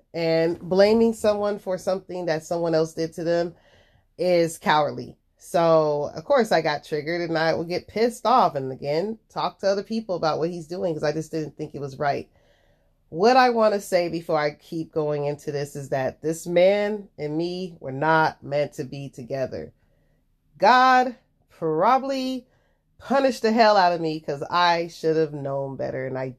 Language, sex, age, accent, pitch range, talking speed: English, female, 30-49, American, 145-190 Hz, 185 wpm